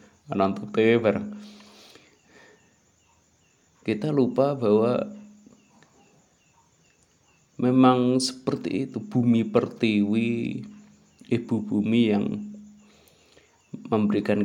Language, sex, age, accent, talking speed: Indonesian, male, 20-39, native, 50 wpm